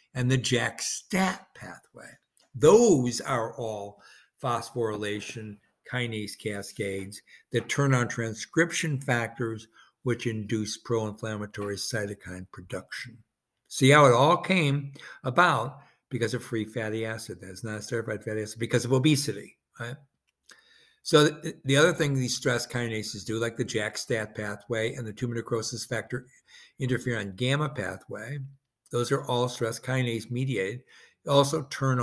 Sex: male